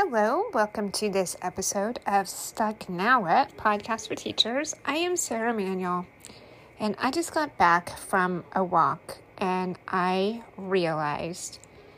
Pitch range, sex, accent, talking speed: 175-215 Hz, female, American, 135 wpm